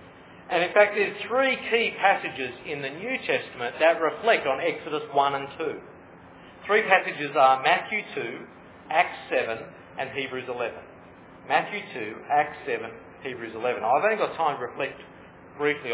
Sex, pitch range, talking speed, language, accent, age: male, 130-195 Hz, 155 wpm, English, Australian, 40-59